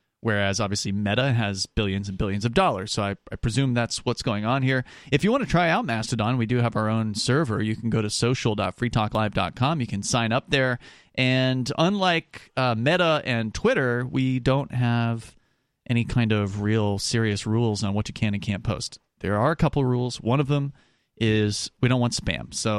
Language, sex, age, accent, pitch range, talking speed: English, male, 30-49, American, 110-135 Hz, 205 wpm